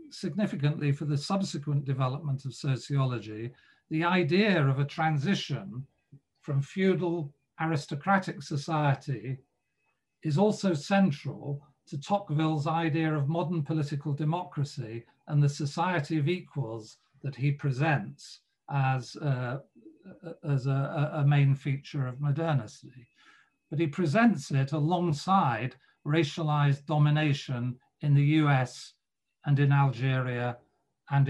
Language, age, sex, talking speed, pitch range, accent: English, 50-69, male, 110 wpm, 135-160 Hz, British